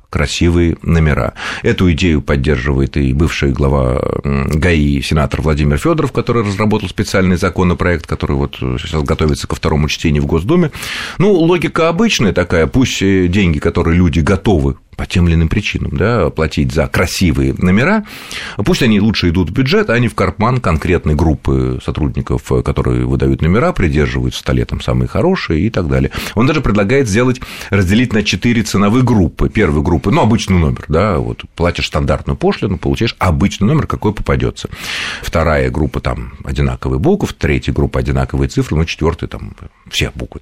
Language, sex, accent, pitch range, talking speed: Russian, male, native, 70-110 Hz, 160 wpm